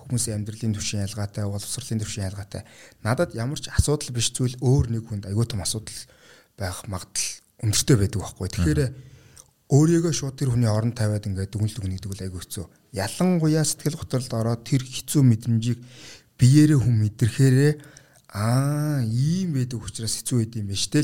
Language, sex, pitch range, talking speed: English, male, 105-135 Hz, 145 wpm